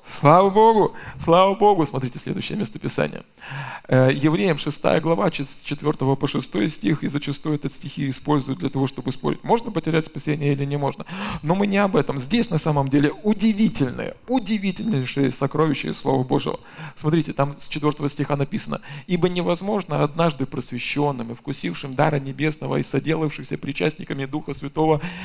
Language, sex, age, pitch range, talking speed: Russian, male, 40-59, 140-170 Hz, 145 wpm